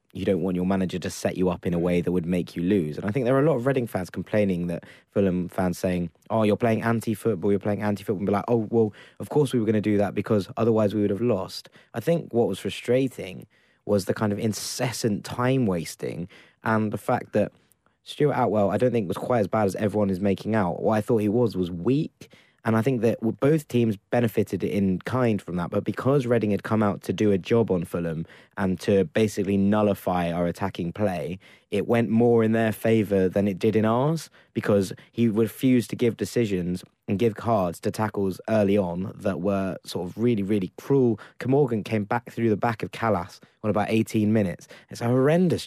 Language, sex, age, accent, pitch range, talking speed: English, male, 20-39, British, 100-120 Hz, 225 wpm